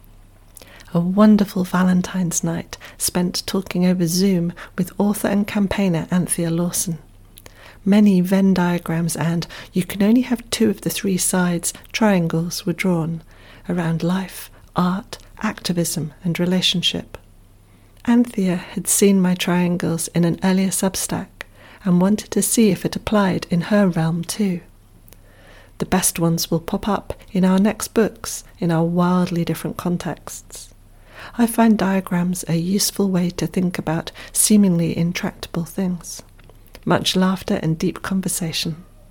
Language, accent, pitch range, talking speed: English, British, 155-190 Hz, 135 wpm